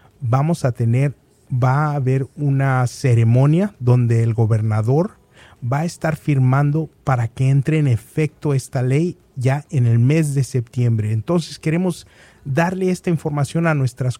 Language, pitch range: Spanish, 125-155 Hz